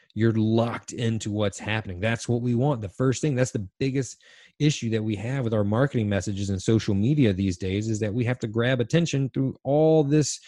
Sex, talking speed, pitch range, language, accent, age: male, 220 wpm, 100-135 Hz, English, American, 30-49